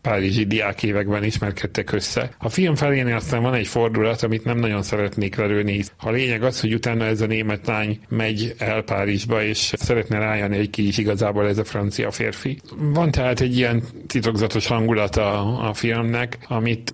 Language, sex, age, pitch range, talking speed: Hungarian, male, 40-59, 105-120 Hz, 175 wpm